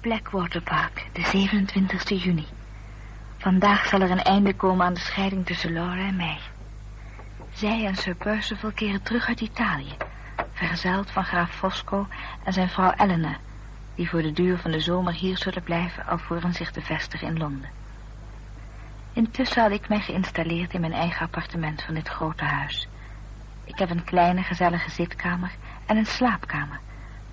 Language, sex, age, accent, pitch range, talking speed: Dutch, female, 50-69, Dutch, 120-195 Hz, 160 wpm